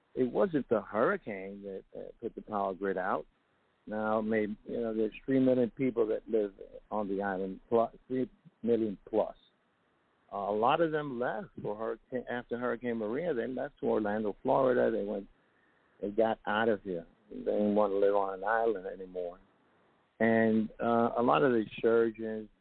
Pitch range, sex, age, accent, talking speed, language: 110-125 Hz, male, 50-69, American, 180 wpm, English